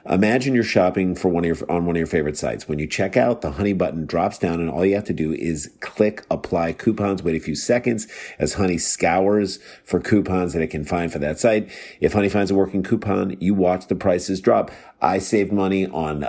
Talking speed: 230 wpm